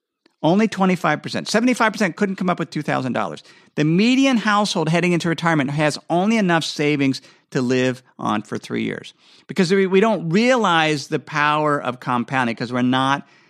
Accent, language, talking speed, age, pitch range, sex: American, English, 155 wpm, 50-69, 140-210 Hz, male